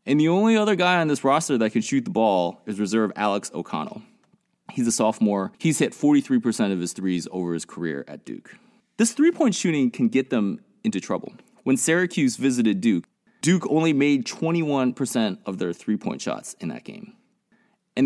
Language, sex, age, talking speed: English, male, 20-39, 185 wpm